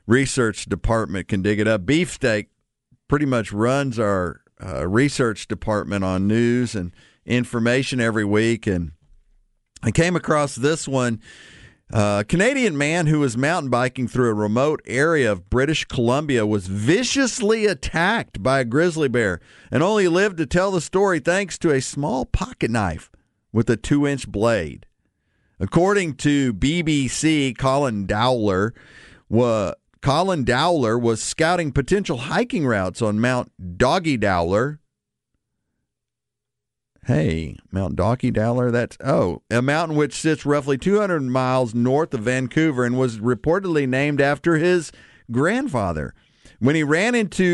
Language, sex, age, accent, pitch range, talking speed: English, male, 50-69, American, 110-150 Hz, 140 wpm